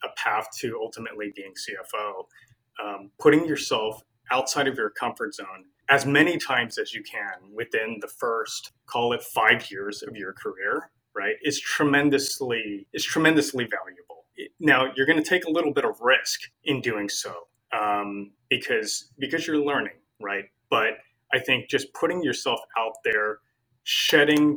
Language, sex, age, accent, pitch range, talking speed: English, male, 30-49, American, 110-165 Hz, 155 wpm